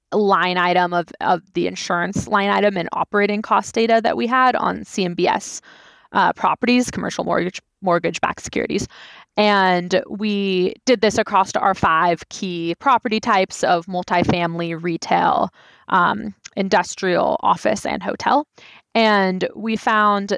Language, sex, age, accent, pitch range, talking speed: English, female, 20-39, American, 190-235 Hz, 125 wpm